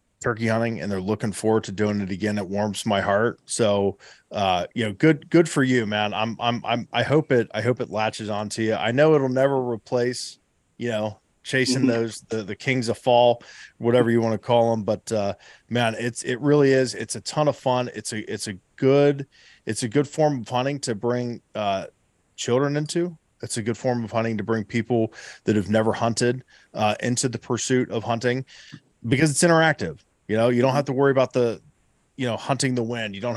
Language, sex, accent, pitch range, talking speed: English, male, American, 110-130 Hz, 220 wpm